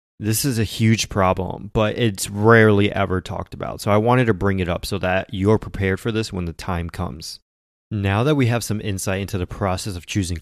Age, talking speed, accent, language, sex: 20-39, 225 wpm, American, English, male